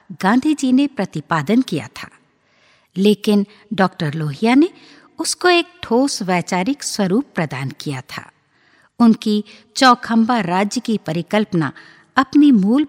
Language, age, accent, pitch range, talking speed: Hindi, 60-79, native, 185-275 Hz, 115 wpm